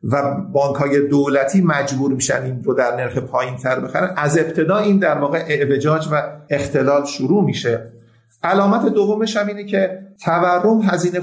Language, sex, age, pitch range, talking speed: English, male, 50-69, 135-185 Hz, 155 wpm